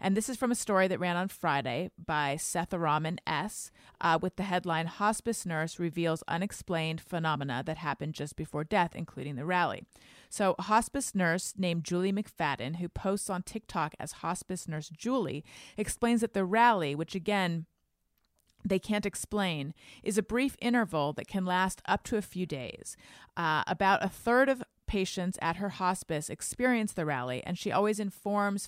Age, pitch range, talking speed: 30-49, 165-205 Hz, 170 wpm